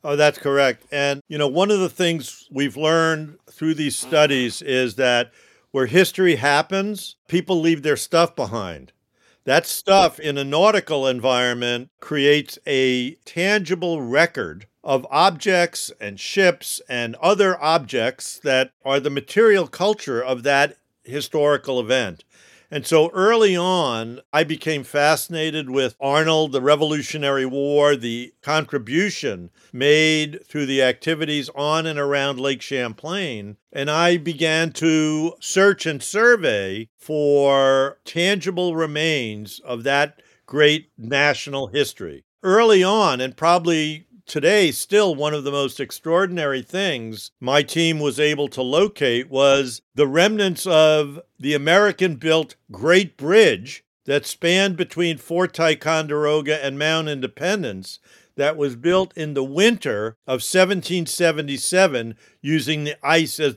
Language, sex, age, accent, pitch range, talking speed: English, male, 50-69, American, 135-170 Hz, 125 wpm